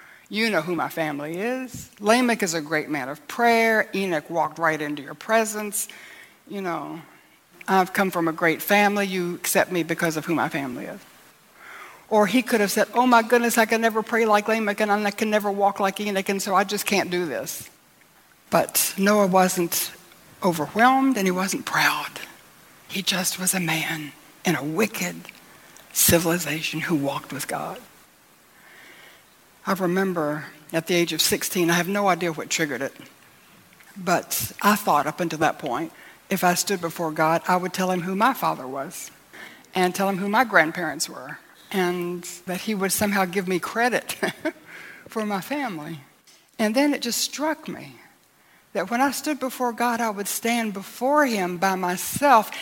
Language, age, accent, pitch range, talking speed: English, 60-79, American, 175-220 Hz, 180 wpm